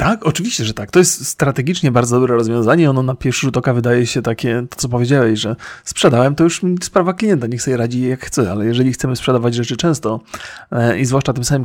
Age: 30-49